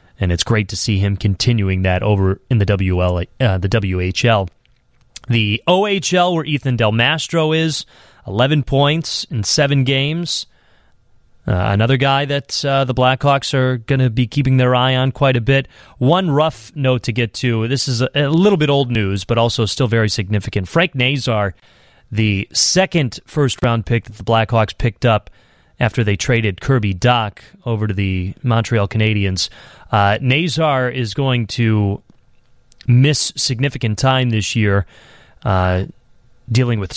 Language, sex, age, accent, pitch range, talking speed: English, male, 30-49, American, 100-135 Hz, 160 wpm